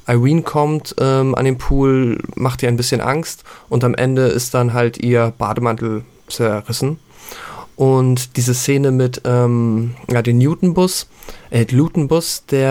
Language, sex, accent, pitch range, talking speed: German, male, German, 120-135 Hz, 145 wpm